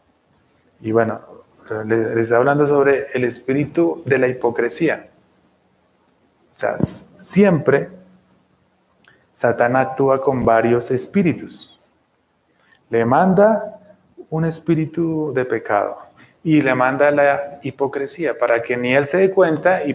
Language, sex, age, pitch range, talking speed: English, male, 30-49, 125-160 Hz, 115 wpm